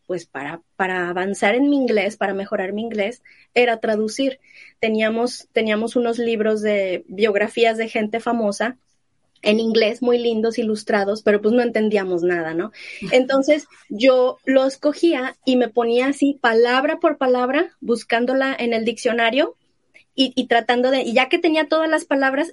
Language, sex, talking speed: Spanish, female, 155 wpm